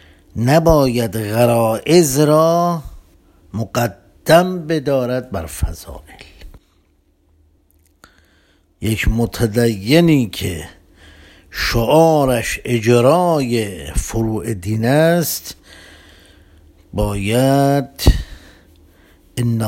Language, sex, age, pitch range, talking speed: Persian, male, 60-79, 85-125 Hz, 50 wpm